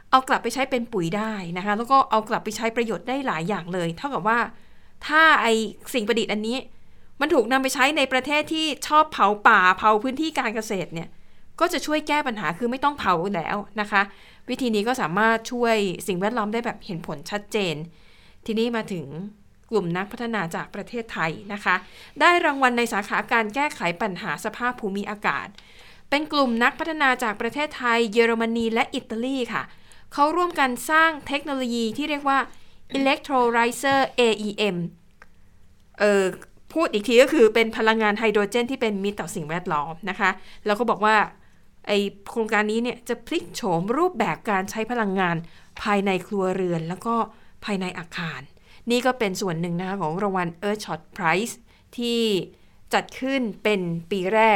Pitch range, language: 195-245 Hz, Thai